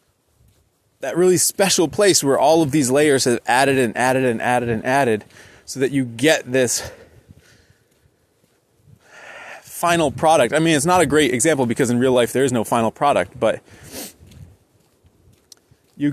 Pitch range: 120-160 Hz